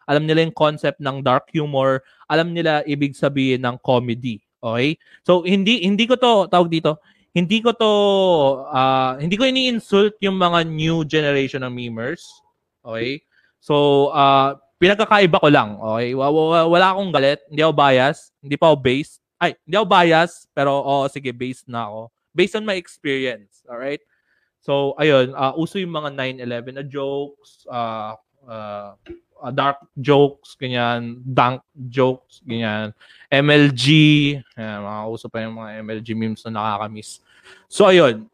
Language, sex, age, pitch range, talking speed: English, male, 20-39, 130-170 Hz, 150 wpm